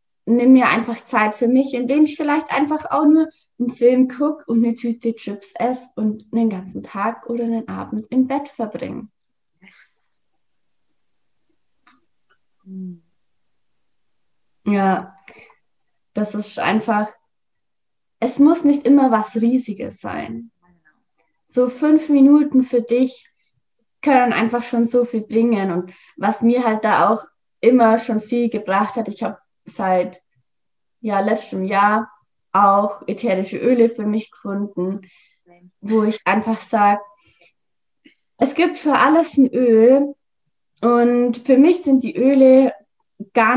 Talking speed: 125 wpm